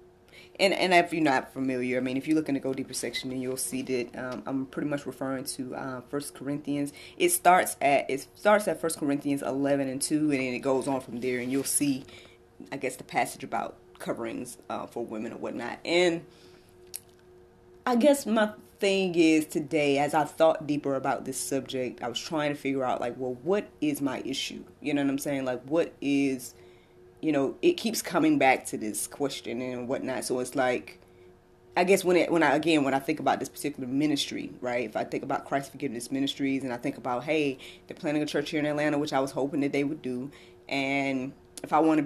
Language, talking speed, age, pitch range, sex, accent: English, 220 wpm, 20-39, 125-155 Hz, female, American